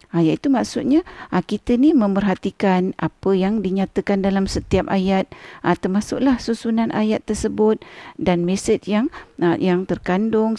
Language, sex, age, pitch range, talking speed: Malay, female, 50-69, 180-230 Hz, 135 wpm